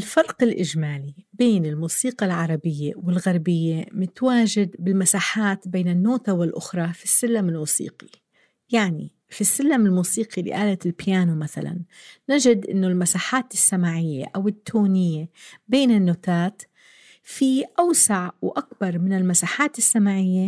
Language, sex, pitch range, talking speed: Arabic, female, 170-215 Hz, 105 wpm